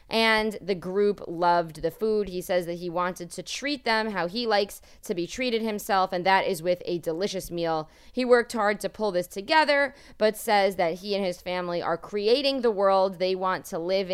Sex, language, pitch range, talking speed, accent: female, English, 175-215 Hz, 210 wpm, American